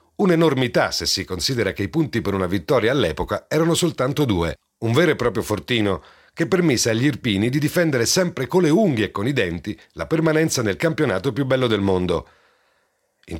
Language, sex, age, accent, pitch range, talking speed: Italian, male, 40-59, native, 115-160 Hz, 190 wpm